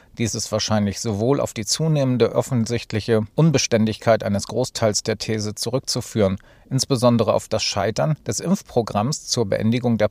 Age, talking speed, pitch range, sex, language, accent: 40-59, 135 wpm, 110-135 Hz, male, German, German